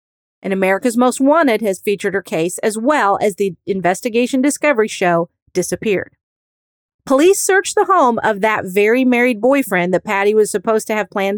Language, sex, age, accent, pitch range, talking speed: English, female, 40-59, American, 190-260 Hz, 170 wpm